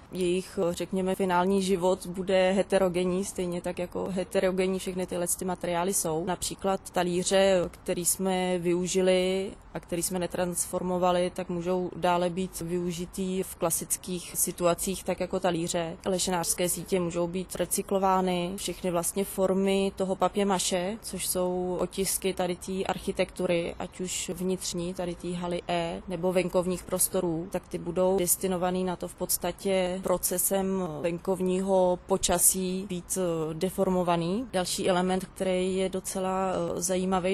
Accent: native